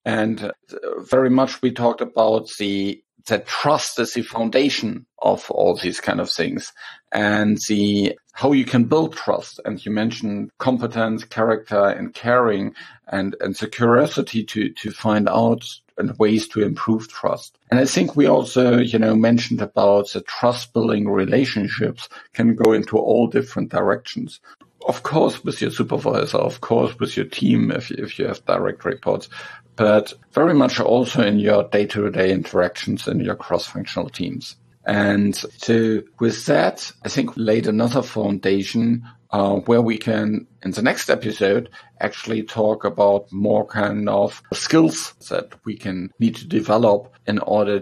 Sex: male